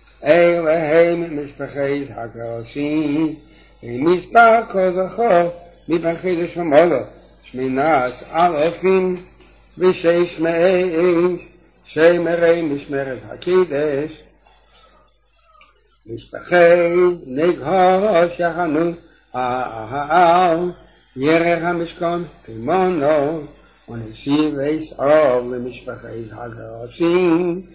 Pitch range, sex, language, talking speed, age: 150-180 Hz, male, English, 75 wpm, 60-79